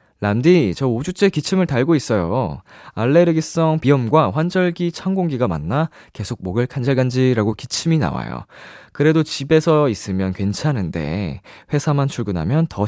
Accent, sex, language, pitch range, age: native, male, Korean, 100-150 Hz, 20-39